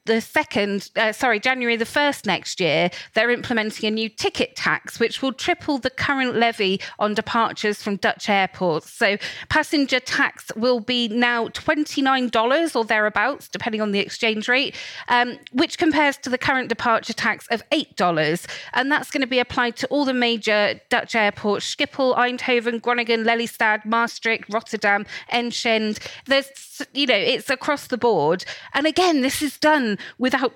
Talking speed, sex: 160 wpm, female